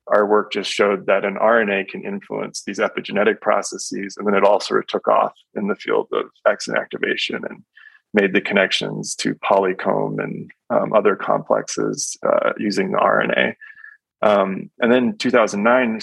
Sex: male